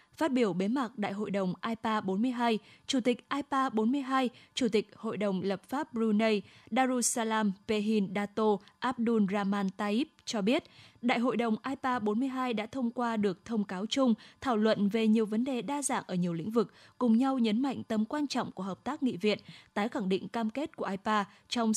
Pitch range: 205-255 Hz